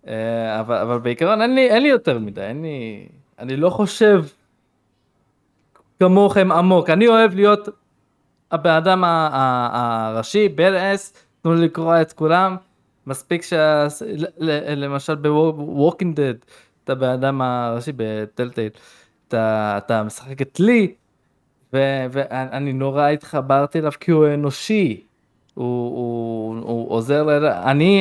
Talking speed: 120 wpm